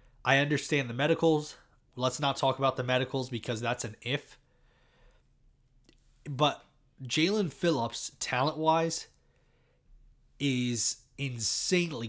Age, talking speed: 20-39, 100 wpm